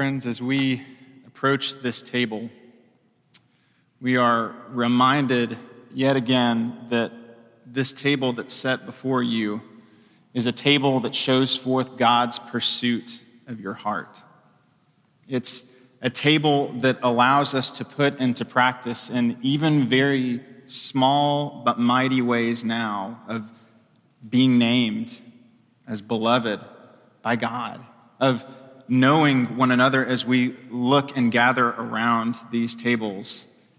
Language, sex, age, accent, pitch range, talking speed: English, male, 20-39, American, 115-130 Hz, 115 wpm